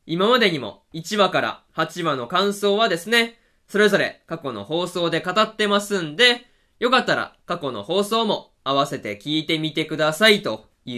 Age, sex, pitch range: 20-39, male, 155-220 Hz